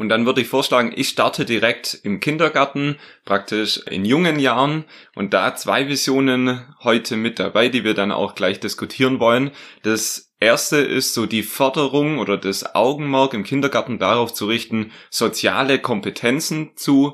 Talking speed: 160 wpm